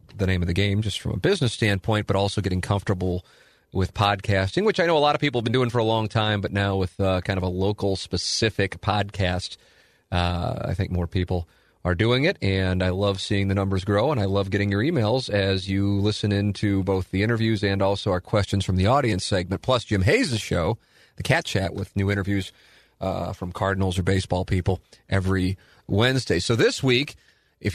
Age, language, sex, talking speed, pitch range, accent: 40-59, English, male, 210 wpm, 95-115 Hz, American